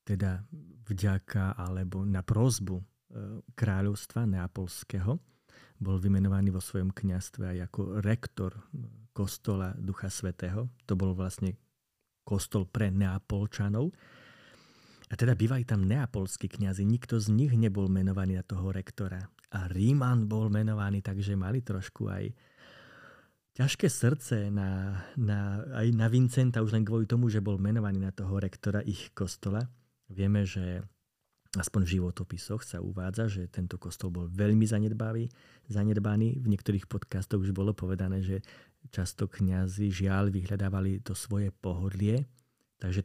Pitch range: 95-115 Hz